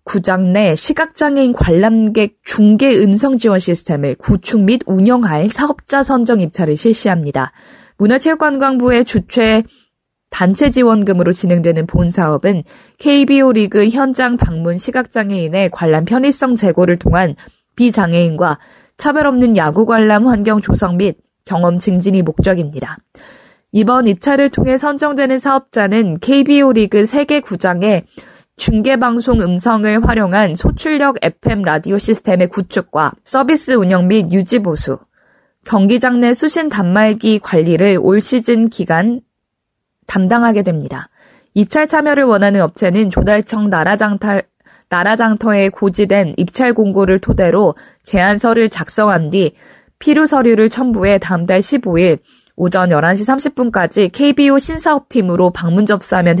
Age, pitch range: 20-39, 185-250 Hz